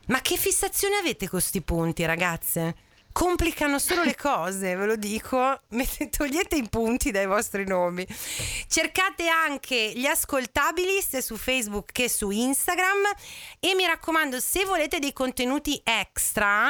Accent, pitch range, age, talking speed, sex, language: native, 190-280 Hz, 30-49, 140 wpm, female, Italian